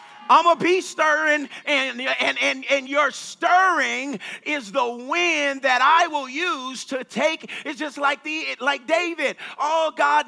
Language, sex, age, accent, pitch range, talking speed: English, male, 40-59, American, 180-275 Hz, 160 wpm